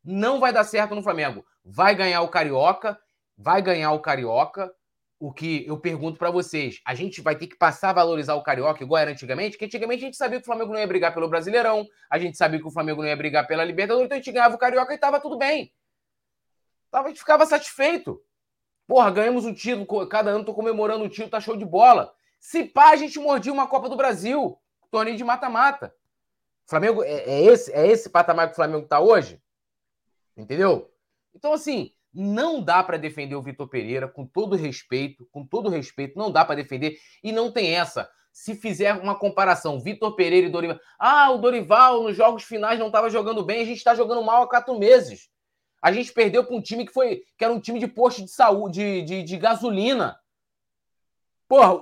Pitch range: 170-250 Hz